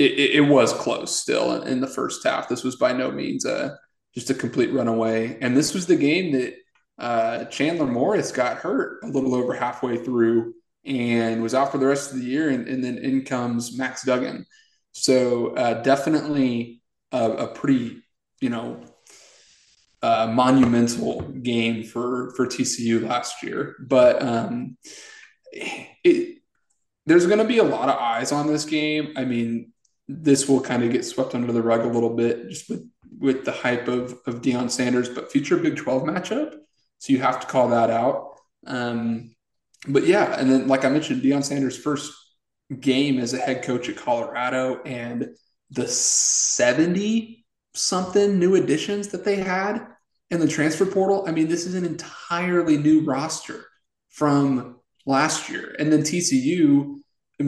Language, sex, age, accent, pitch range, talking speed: English, male, 20-39, American, 120-170 Hz, 165 wpm